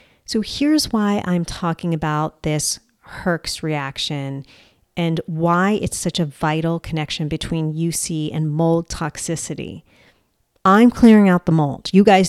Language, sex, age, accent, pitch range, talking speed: English, female, 40-59, American, 155-185 Hz, 135 wpm